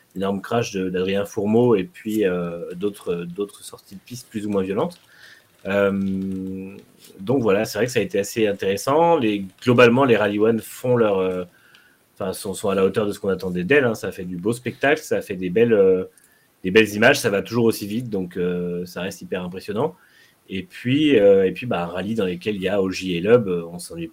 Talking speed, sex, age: 215 wpm, male, 30-49